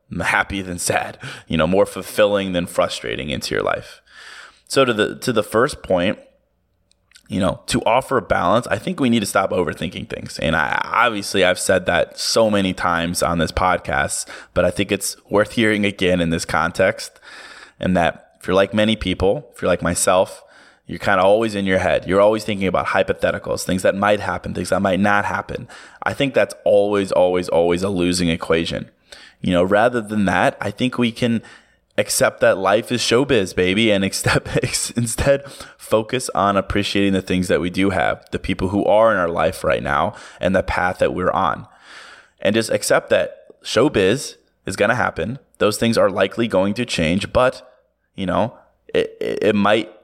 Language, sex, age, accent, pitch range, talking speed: English, male, 20-39, American, 90-115 Hz, 195 wpm